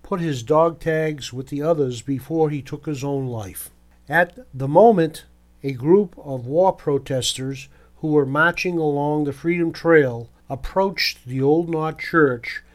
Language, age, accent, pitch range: English, 50-69, American, 130-160 Hz